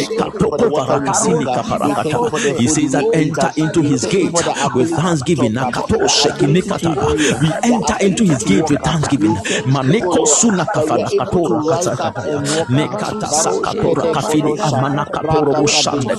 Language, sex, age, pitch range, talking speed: English, male, 50-69, 140-155 Hz, 110 wpm